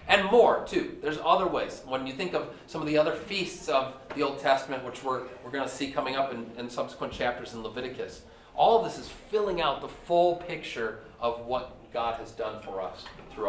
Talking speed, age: 220 wpm, 30-49